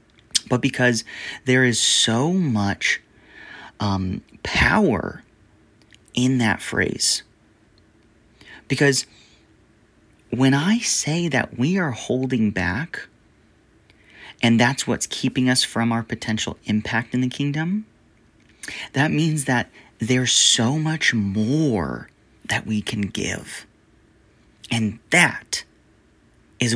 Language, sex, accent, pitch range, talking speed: English, male, American, 110-140 Hz, 105 wpm